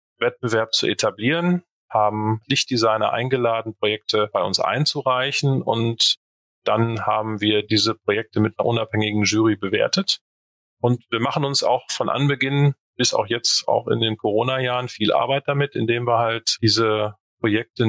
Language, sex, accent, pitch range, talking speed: German, male, German, 110-130 Hz, 145 wpm